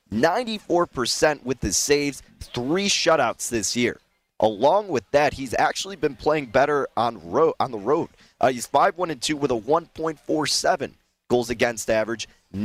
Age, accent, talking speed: 30-49, American, 140 wpm